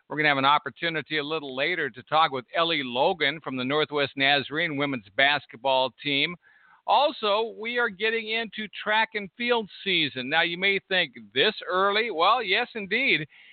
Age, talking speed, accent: 50-69, 175 wpm, American